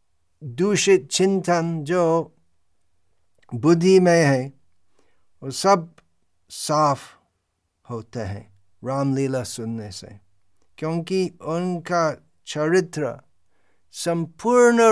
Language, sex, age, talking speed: Hindi, male, 50-69, 70 wpm